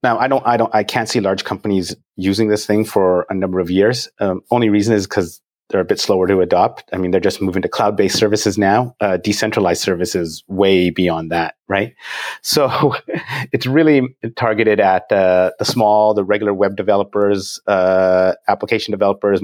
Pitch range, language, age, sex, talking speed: 95-110 Hz, English, 30-49, male, 185 wpm